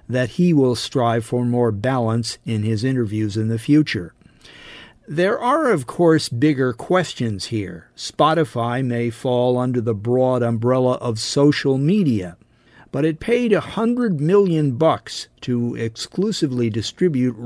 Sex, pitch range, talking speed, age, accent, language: male, 120-155 Hz, 140 wpm, 50-69, American, English